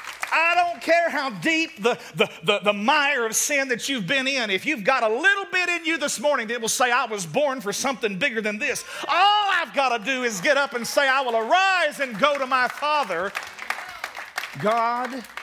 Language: English